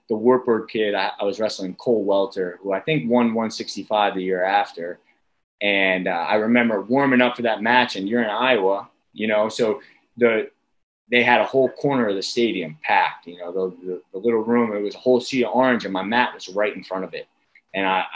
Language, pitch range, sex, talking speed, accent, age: English, 95-125 Hz, male, 225 wpm, American, 20-39